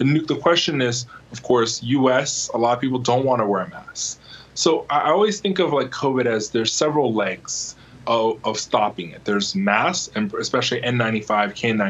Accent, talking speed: American, 185 wpm